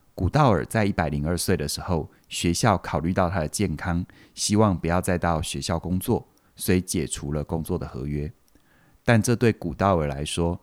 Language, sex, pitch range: Chinese, male, 80-105 Hz